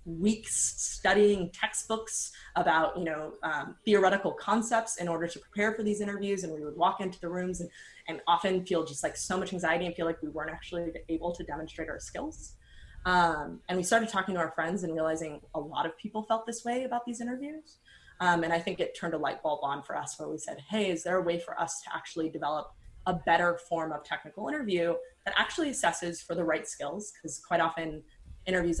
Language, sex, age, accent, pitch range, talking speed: English, female, 20-39, American, 160-200 Hz, 220 wpm